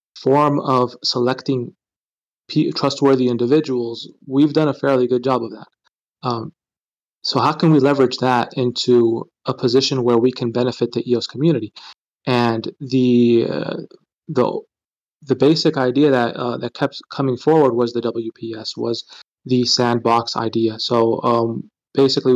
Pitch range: 115-130 Hz